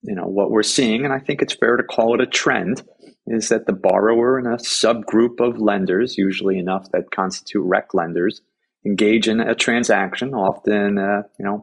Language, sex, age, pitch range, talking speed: English, male, 30-49, 95-110 Hz, 195 wpm